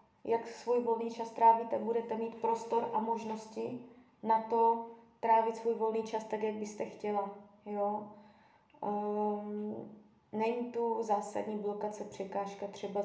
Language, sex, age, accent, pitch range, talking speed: Czech, female, 20-39, native, 205-235 Hz, 130 wpm